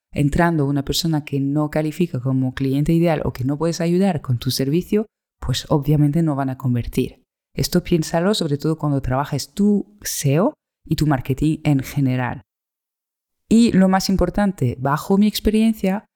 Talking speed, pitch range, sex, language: 160 wpm, 140-180 Hz, female, Spanish